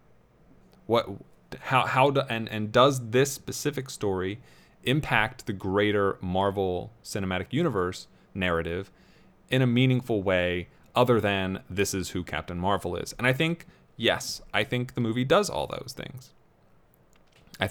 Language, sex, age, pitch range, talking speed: English, male, 30-49, 95-130 Hz, 140 wpm